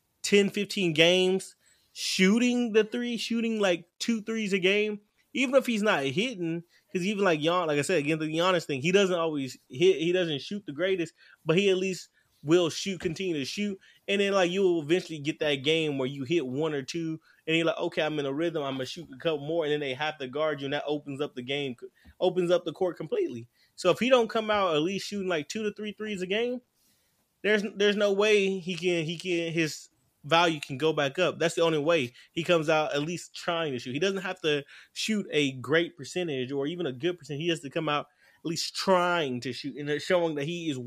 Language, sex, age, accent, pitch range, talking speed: English, male, 20-39, American, 150-195 Hz, 245 wpm